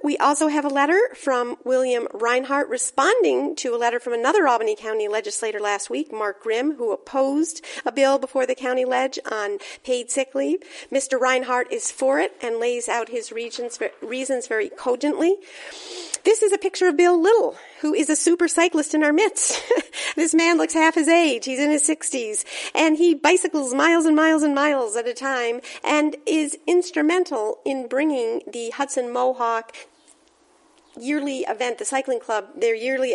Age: 50-69